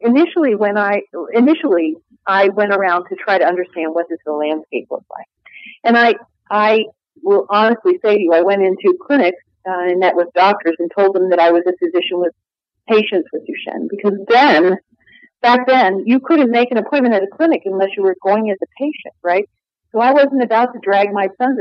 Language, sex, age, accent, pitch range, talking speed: English, female, 50-69, American, 190-255 Hz, 205 wpm